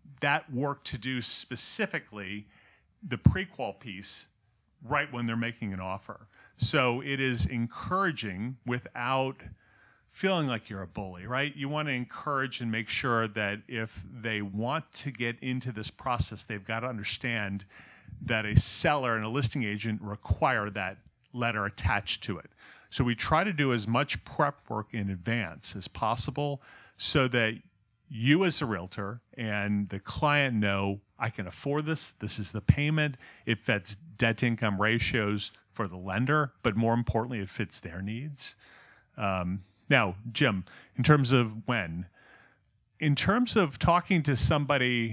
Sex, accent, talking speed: male, American, 155 wpm